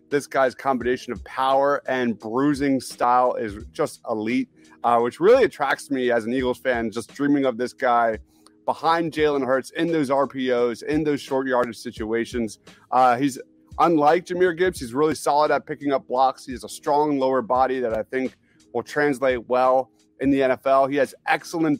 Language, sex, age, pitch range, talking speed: English, male, 30-49, 120-145 Hz, 180 wpm